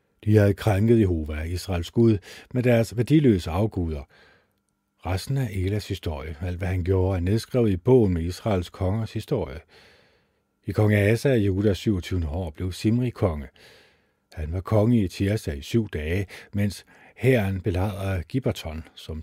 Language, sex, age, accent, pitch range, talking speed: Danish, male, 50-69, native, 90-115 Hz, 155 wpm